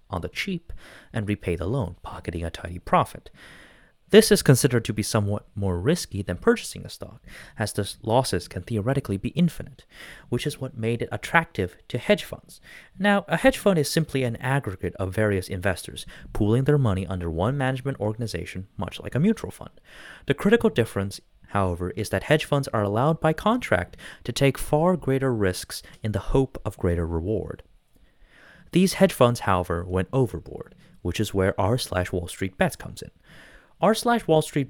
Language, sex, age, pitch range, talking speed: English, male, 30-49, 100-140 Hz, 180 wpm